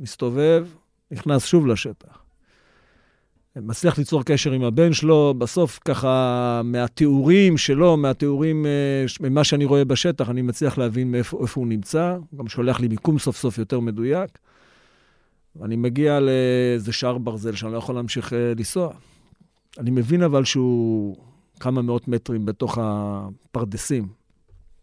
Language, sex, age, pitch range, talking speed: Hebrew, male, 40-59, 120-160 Hz, 135 wpm